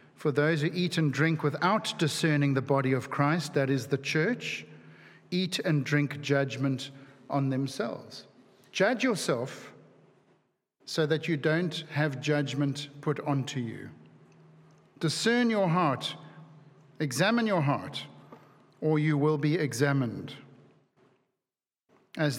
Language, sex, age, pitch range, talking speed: English, male, 50-69, 140-175 Hz, 120 wpm